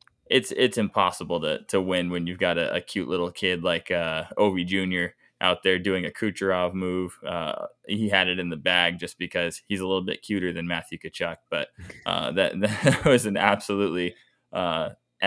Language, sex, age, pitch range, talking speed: English, male, 20-39, 85-100 Hz, 195 wpm